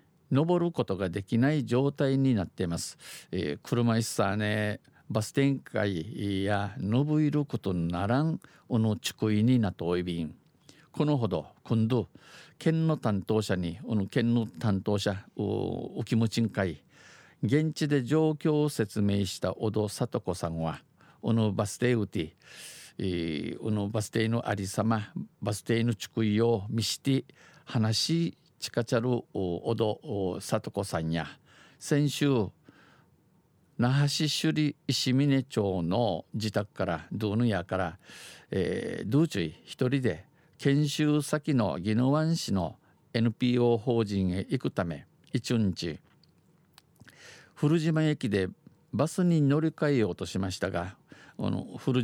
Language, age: Japanese, 50-69